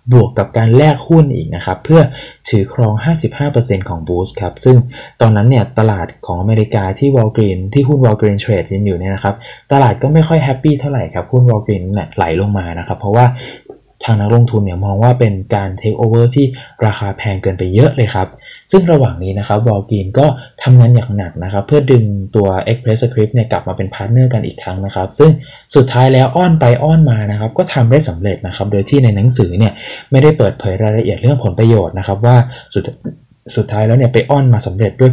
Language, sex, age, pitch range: Thai, male, 20-39, 100-130 Hz